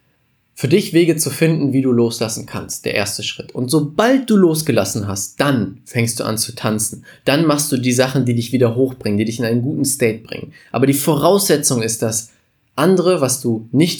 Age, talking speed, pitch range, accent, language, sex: 20-39, 205 wpm, 115-145 Hz, German, German, male